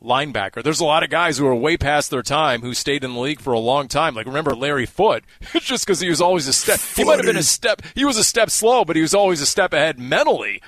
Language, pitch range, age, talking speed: English, 115-135 Hz, 30-49, 290 wpm